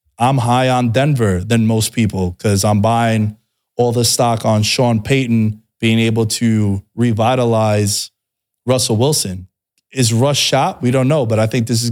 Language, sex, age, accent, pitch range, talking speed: English, male, 20-39, American, 105-130 Hz, 165 wpm